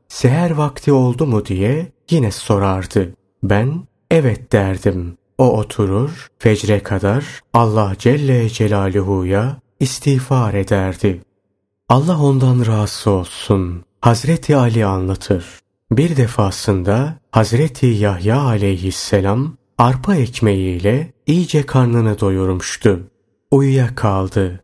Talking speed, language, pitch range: 95 wpm, Turkish, 100-130 Hz